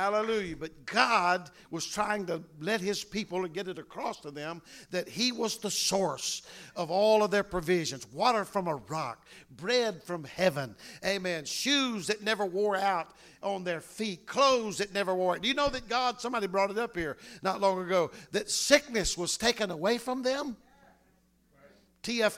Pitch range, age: 175-215 Hz, 50-69